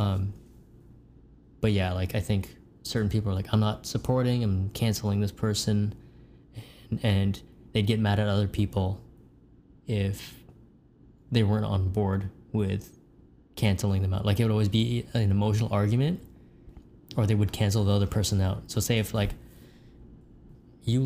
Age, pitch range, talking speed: 10-29, 100-115 Hz, 155 wpm